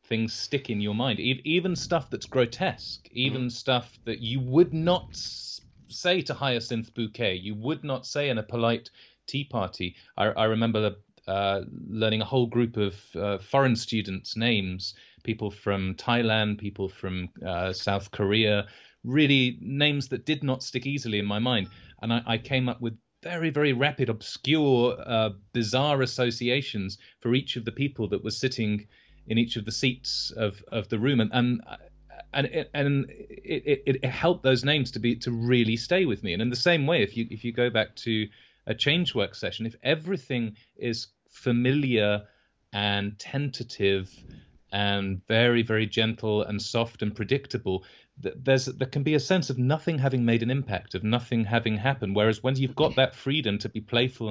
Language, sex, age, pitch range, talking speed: English, male, 30-49, 105-130 Hz, 175 wpm